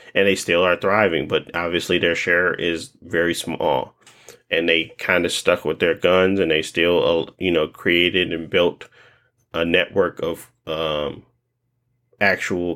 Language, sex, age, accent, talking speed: English, male, 30-49, American, 155 wpm